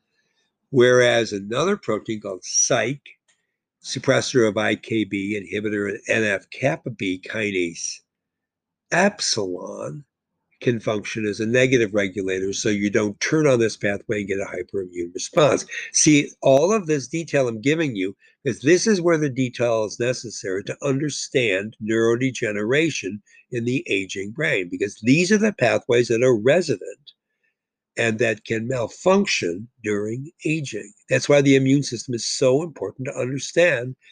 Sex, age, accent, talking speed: male, 60-79, American, 135 wpm